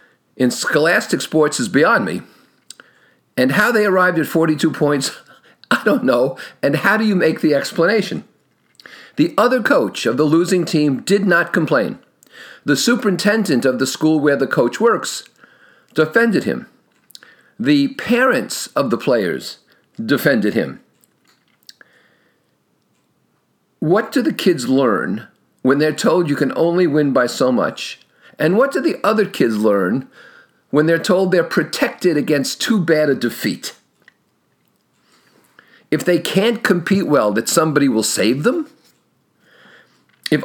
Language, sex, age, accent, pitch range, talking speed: English, male, 50-69, American, 150-215 Hz, 140 wpm